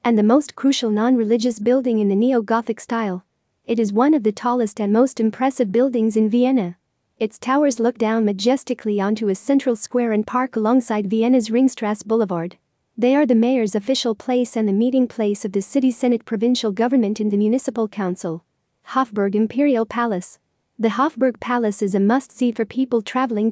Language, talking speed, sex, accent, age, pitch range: English, 185 wpm, female, American, 40-59, 215-250 Hz